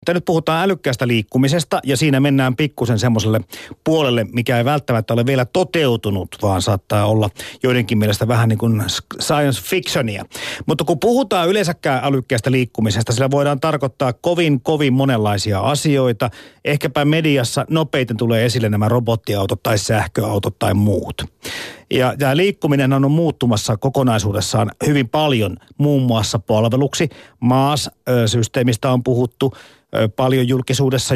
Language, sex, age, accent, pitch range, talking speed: Finnish, male, 50-69, native, 115-140 Hz, 130 wpm